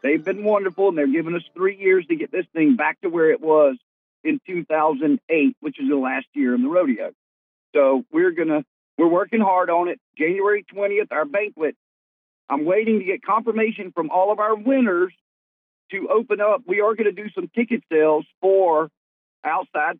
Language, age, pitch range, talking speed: English, 50-69, 165-265 Hz, 185 wpm